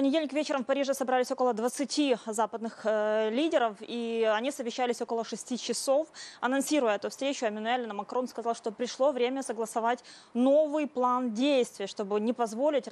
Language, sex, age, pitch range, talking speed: Russian, female, 20-39, 220-270 Hz, 155 wpm